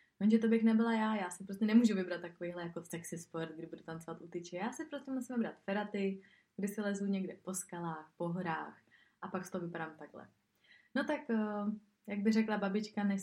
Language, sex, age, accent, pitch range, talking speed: Czech, female, 20-39, native, 180-210 Hz, 215 wpm